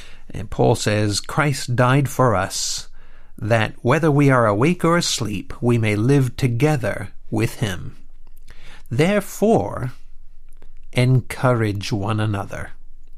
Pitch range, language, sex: 105-145 Hz, English, male